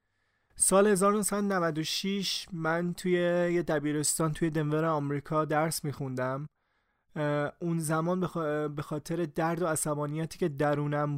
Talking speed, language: 115 wpm, Persian